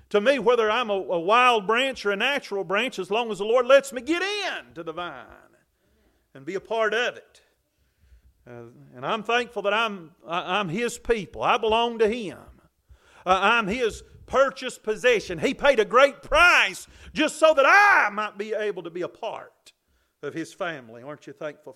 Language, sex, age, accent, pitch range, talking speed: English, male, 40-59, American, 190-265 Hz, 195 wpm